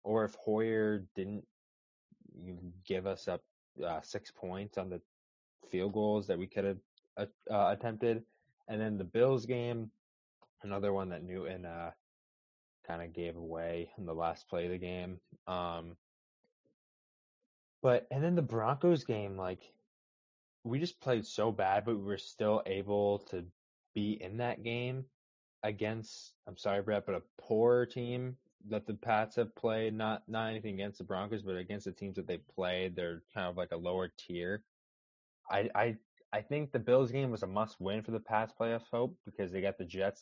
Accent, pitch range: American, 90-110 Hz